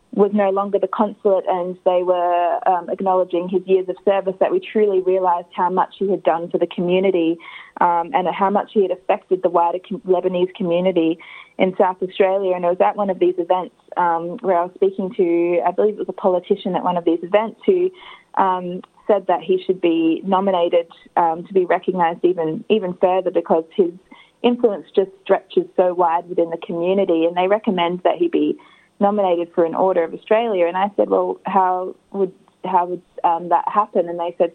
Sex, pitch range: female, 175-200 Hz